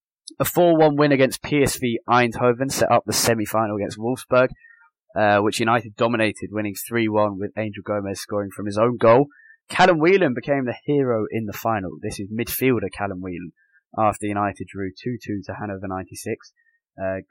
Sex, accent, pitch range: male, British, 105-130 Hz